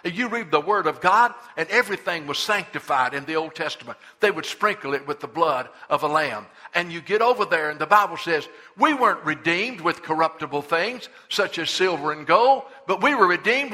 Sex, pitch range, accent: male, 170-235 Hz, American